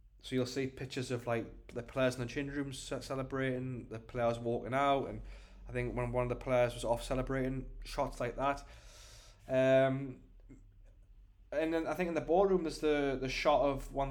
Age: 20-39